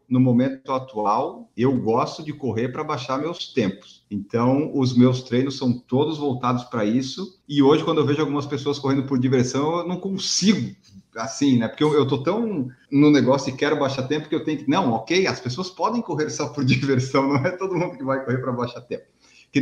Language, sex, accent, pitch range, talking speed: Portuguese, male, Brazilian, 130-175 Hz, 215 wpm